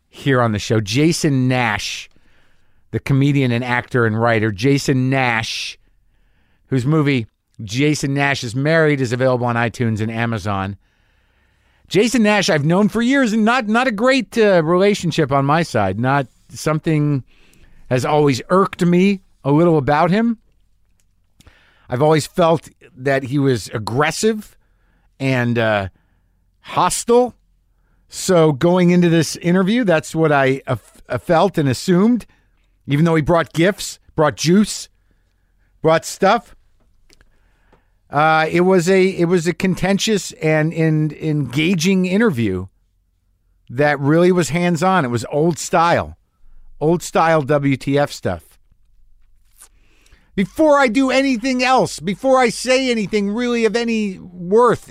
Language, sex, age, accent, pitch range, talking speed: English, male, 50-69, American, 115-185 Hz, 135 wpm